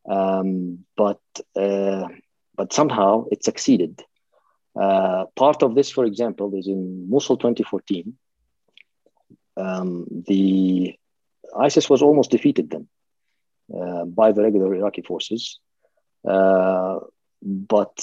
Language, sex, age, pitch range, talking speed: English, male, 50-69, 95-115 Hz, 105 wpm